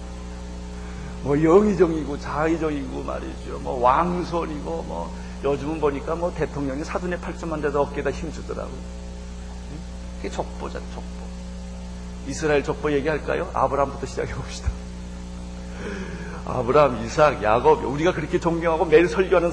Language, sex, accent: Korean, male, native